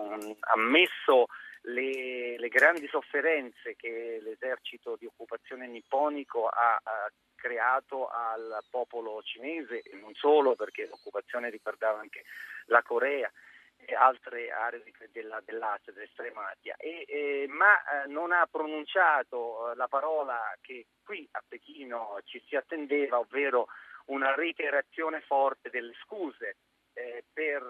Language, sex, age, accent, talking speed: Italian, male, 40-59, native, 115 wpm